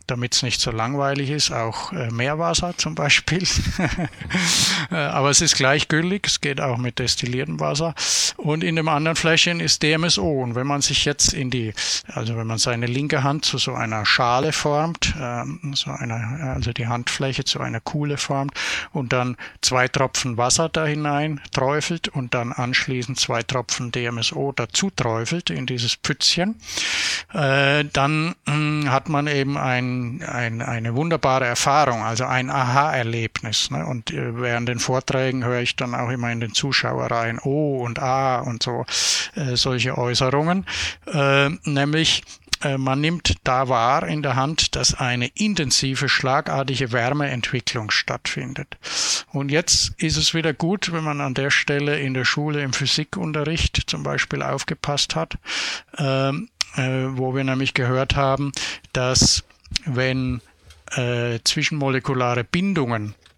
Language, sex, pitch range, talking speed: German, male, 120-150 Hz, 150 wpm